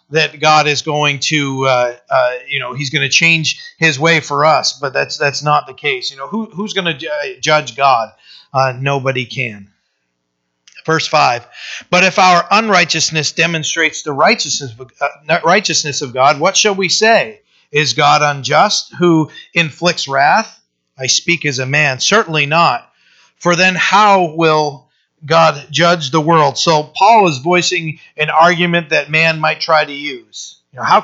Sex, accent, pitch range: male, American, 145-175 Hz